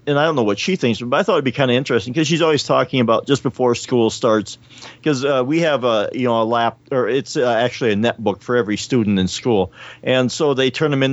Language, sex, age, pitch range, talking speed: English, male, 40-59, 110-130 Hz, 270 wpm